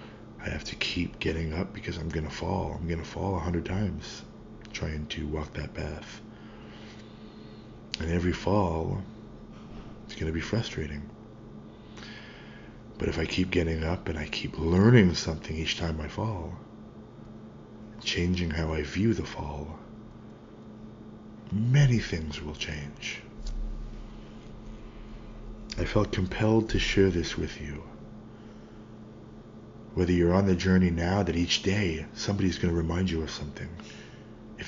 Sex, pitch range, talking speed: male, 80-110 Hz, 135 wpm